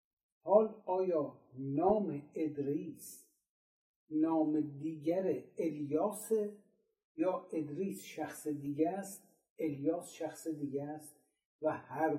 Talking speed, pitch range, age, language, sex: 90 wpm, 150-210 Hz, 60-79, Persian, male